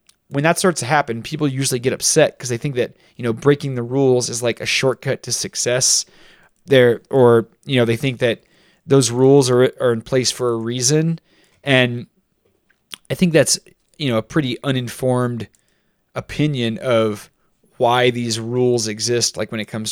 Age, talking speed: 30-49, 180 wpm